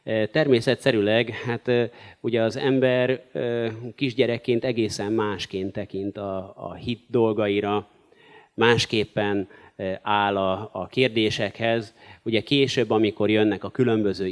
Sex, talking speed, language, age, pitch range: male, 90 wpm, Hungarian, 30-49, 100-120 Hz